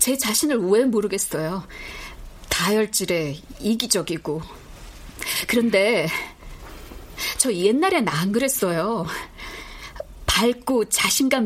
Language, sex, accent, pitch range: Korean, female, native, 175-230 Hz